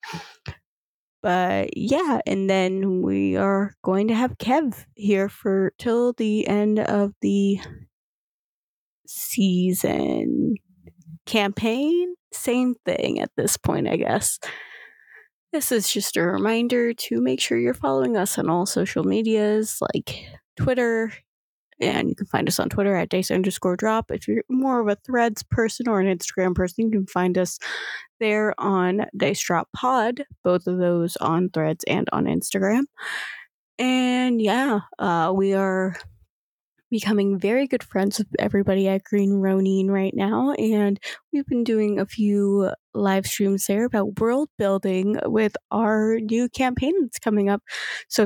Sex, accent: female, American